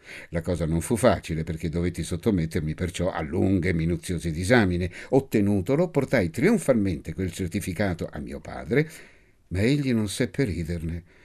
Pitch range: 85-125 Hz